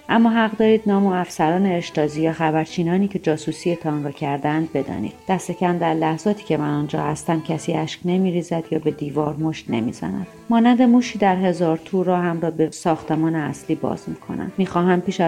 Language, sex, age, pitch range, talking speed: Persian, female, 40-59, 155-185 Hz, 170 wpm